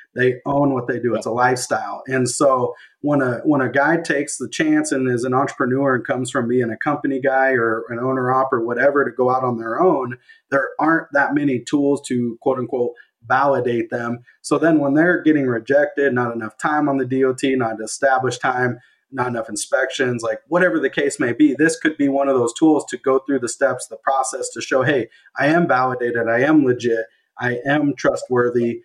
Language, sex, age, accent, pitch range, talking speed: English, male, 30-49, American, 120-140 Hz, 210 wpm